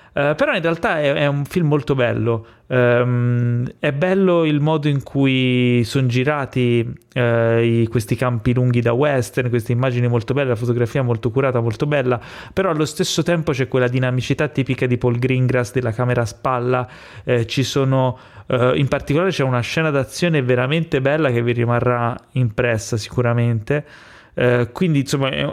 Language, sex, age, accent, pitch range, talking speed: Italian, male, 30-49, native, 125-150 Hz, 170 wpm